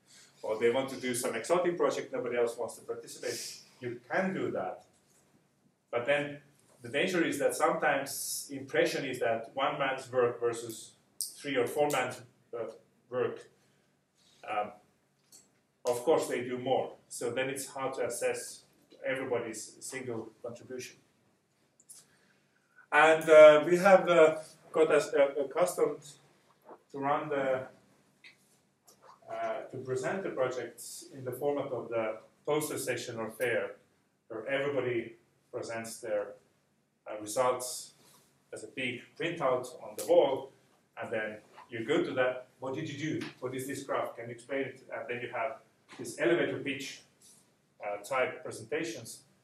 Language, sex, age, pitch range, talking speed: English, male, 30-49, 125-180 Hz, 145 wpm